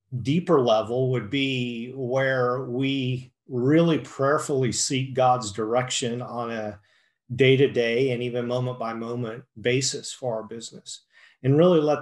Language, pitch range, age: English, 125-145 Hz, 40-59